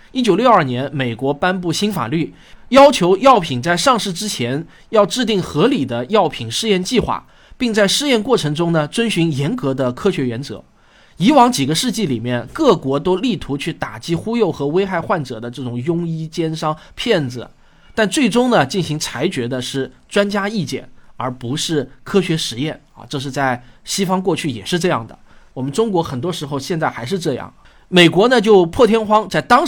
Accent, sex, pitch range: native, male, 135-210 Hz